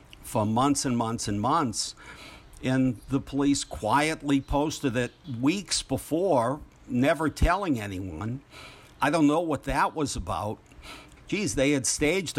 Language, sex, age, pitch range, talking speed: English, male, 60-79, 110-145 Hz, 135 wpm